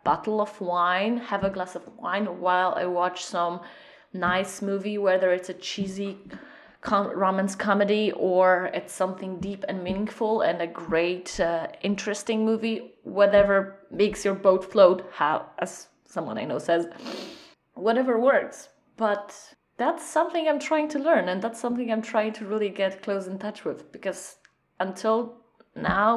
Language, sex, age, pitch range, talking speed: English, female, 20-39, 185-220 Hz, 150 wpm